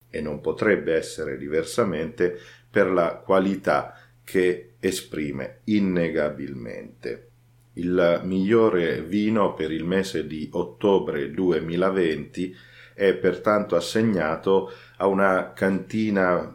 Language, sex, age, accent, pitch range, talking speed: Italian, male, 40-59, native, 85-105 Hz, 95 wpm